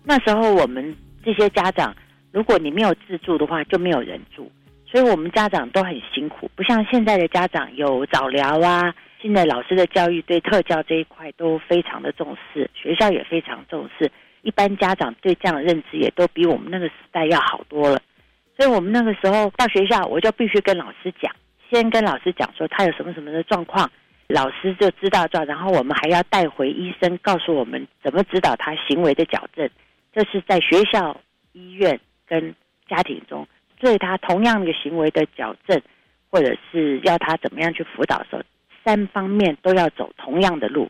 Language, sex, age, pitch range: Chinese, female, 40-59, 155-195 Hz